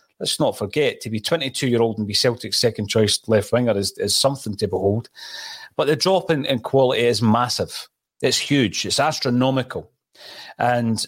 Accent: British